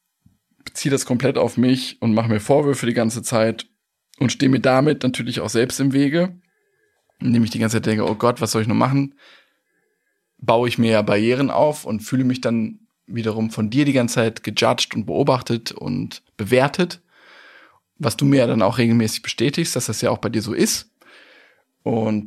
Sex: male